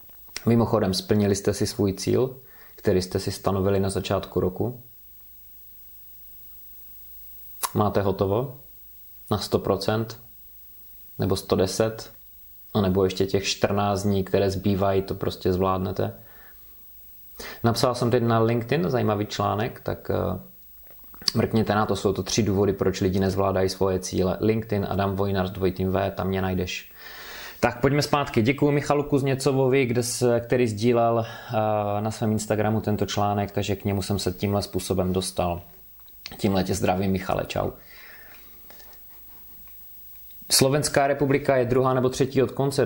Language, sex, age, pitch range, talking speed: Czech, male, 30-49, 95-120 Hz, 130 wpm